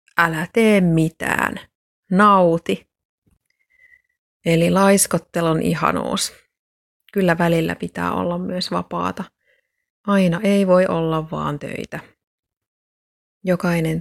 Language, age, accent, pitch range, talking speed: Finnish, 30-49, native, 155-190 Hz, 85 wpm